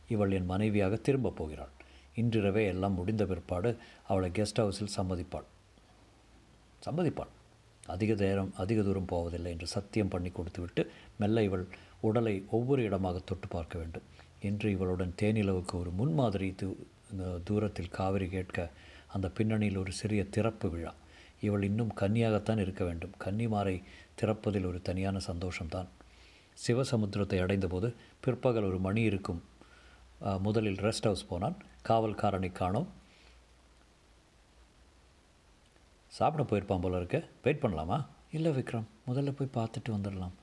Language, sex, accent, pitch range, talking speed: Tamil, male, native, 90-110 Hz, 115 wpm